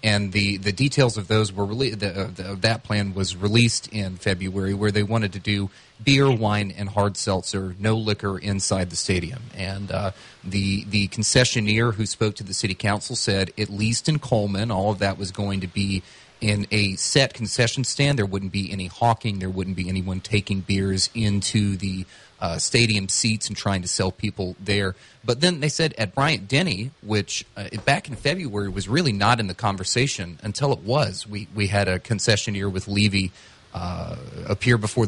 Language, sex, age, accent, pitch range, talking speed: English, male, 30-49, American, 95-120 Hz, 190 wpm